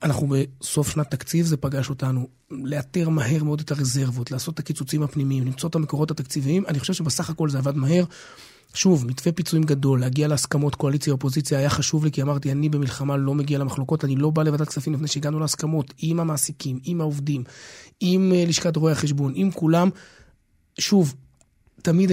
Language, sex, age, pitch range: Hebrew, male, 30-49, 130-160 Hz